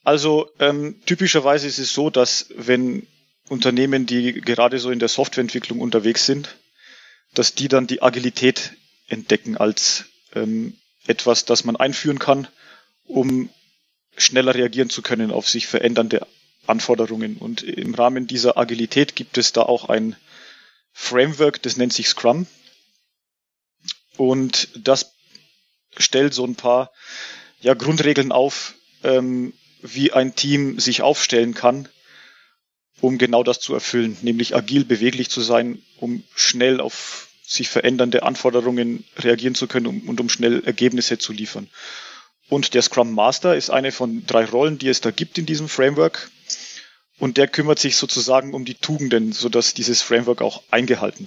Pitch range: 120-140 Hz